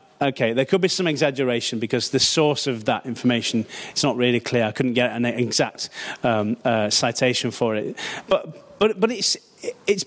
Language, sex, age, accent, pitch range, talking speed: English, male, 30-49, British, 130-165 Hz, 185 wpm